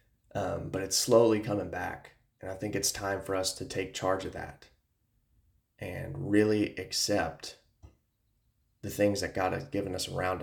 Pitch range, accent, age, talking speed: 95-110 Hz, American, 20-39, 165 wpm